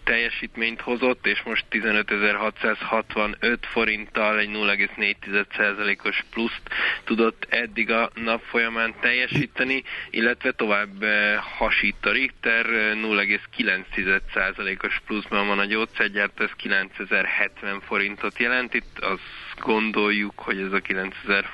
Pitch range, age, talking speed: 100-115 Hz, 20-39, 100 wpm